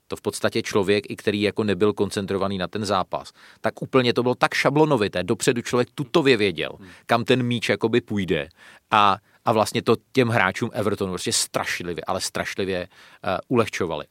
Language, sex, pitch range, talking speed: Czech, male, 95-125 Hz, 165 wpm